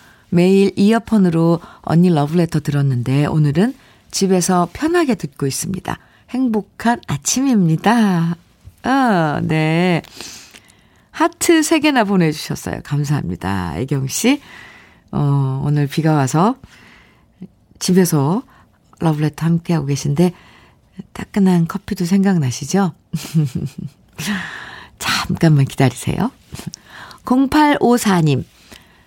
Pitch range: 165-235 Hz